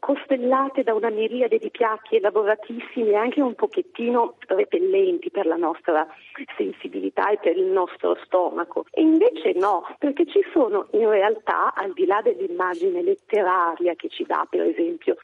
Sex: female